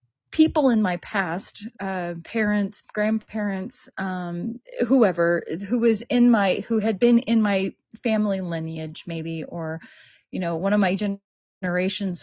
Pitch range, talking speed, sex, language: 195-245 Hz, 135 wpm, female, English